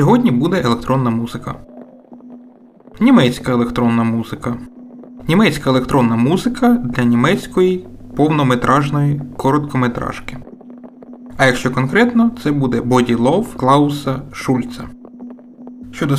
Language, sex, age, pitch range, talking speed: Ukrainian, male, 20-39, 125-190 Hz, 90 wpm